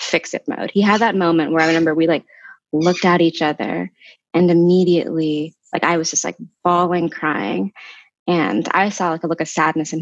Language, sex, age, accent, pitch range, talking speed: English, female, 20-39, American, 165-205 Hz, 205 wpm